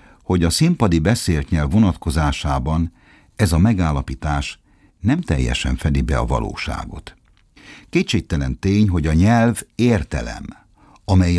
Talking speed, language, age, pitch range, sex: 115 wpm, Hungarian, 60-79, 80-105 Hz, male